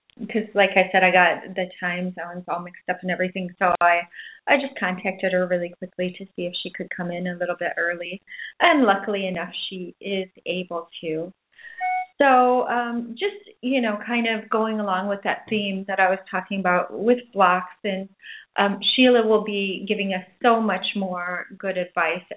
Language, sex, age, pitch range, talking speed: English, female, 30-49, 185-240 Hz, 190 wpm